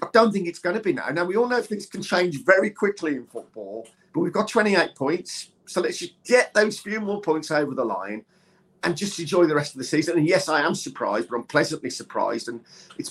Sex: male